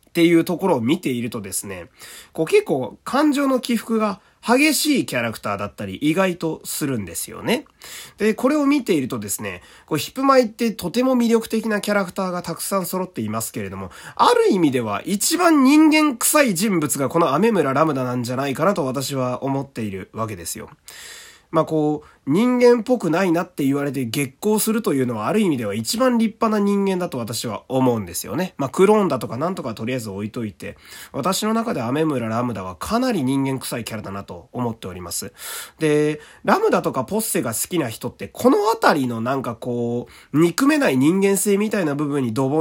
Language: Japanese